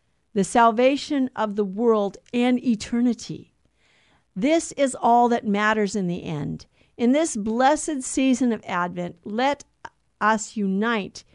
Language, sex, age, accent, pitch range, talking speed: English, female, 50-69, American, 200-260 Hz, 125 wpm